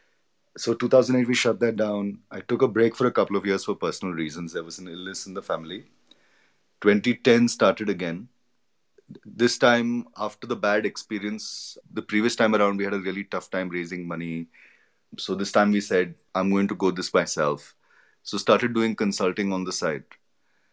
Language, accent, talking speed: English, Indian, 185 wpm